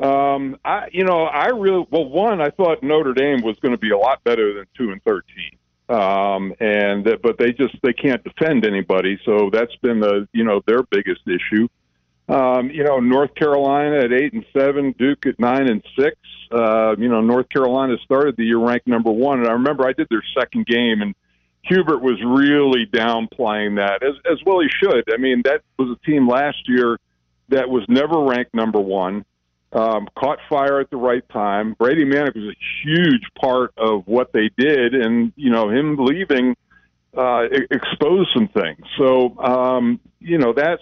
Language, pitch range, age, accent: English, 110-145 Hz, 50-69, American